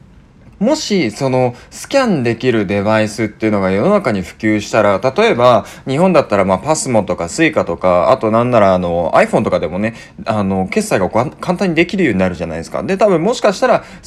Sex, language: male, Japanese